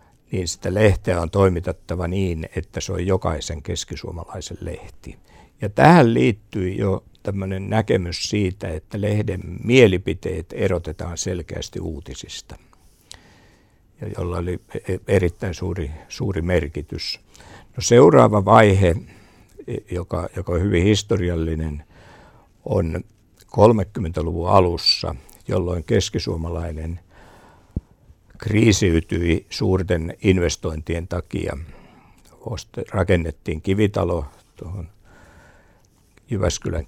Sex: male